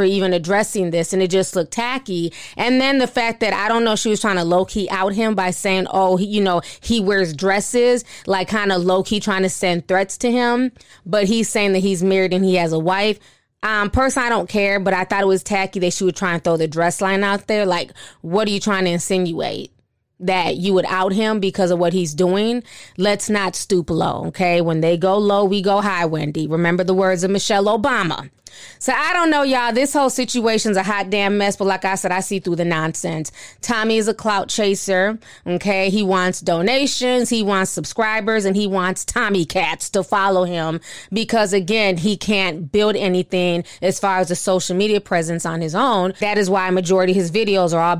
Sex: female